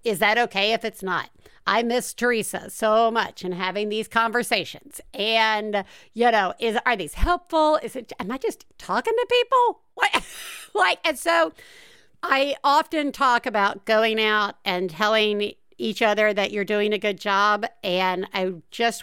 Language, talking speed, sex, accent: English, 165 wpm, female, American